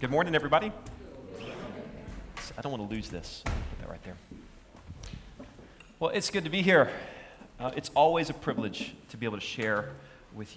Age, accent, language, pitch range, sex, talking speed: 30-49, American, English, 115-150 Hz, male, 170 wpm